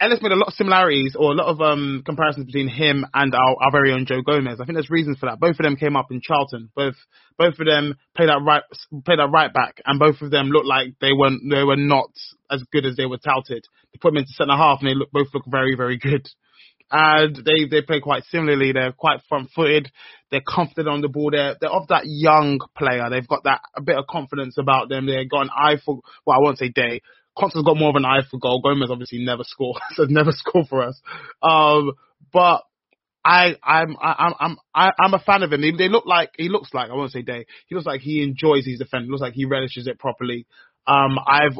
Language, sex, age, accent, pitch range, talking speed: English, male, 20-39, British, 130-150 Hz, 250 wpm